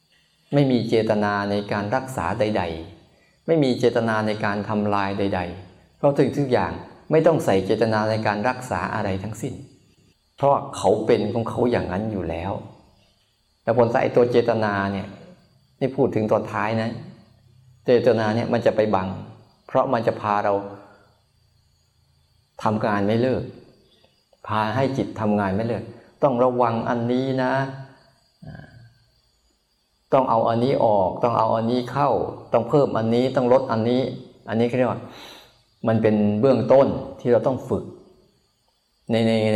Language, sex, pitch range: Thai, male, 100-125 Hz